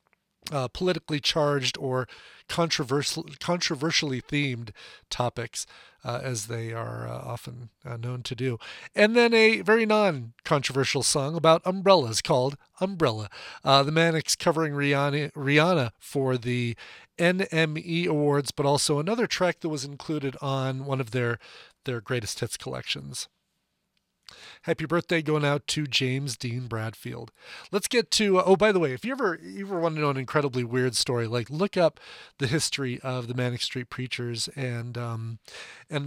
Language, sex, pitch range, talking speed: English, male, 125-160 Hz, 155 wpm